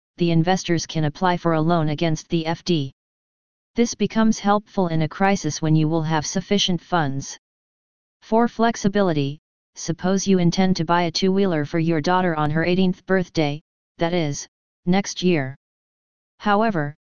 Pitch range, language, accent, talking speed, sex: 160-190 Hz, English, American, 150 wpm, female